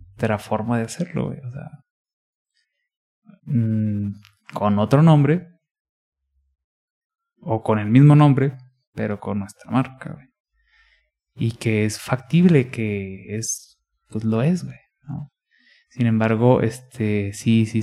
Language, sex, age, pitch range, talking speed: English, male, 20-39, 110-140 Hz, 130 wpm